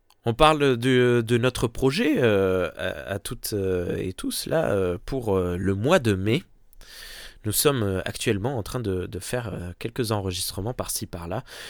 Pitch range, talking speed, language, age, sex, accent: 95-125 Hz, 150 wpm, French, 20-39, male, French